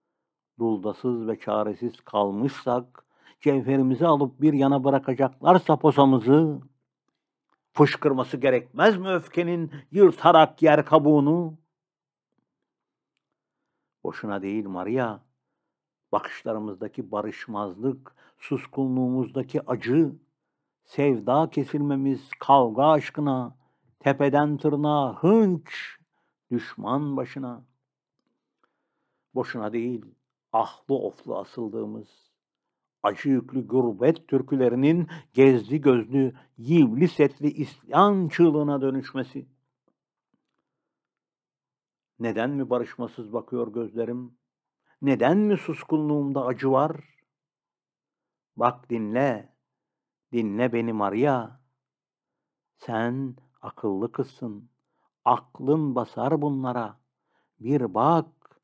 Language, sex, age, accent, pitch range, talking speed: Turkish, male, 60-79, native, 120-150 Hz, 75 wpm